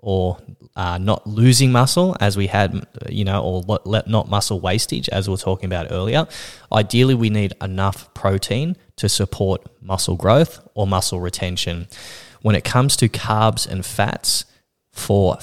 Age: 20-39